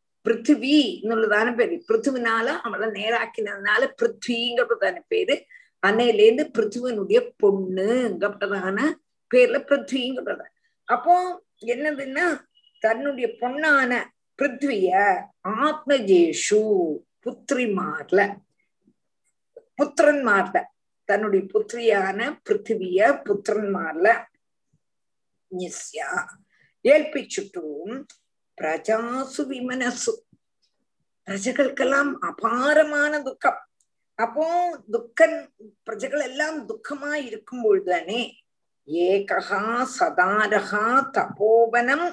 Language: Tamil